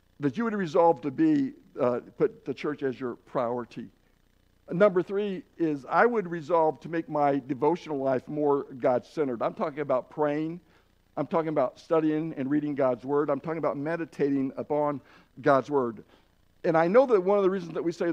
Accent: American